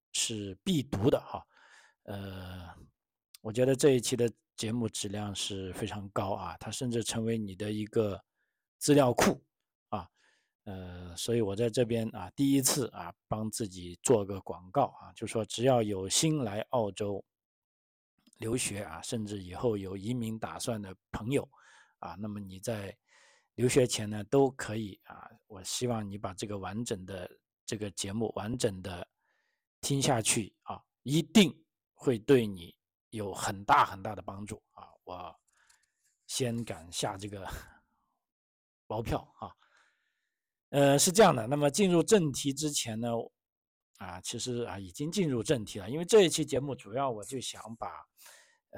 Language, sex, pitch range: Chinese, male, 100-130 Hz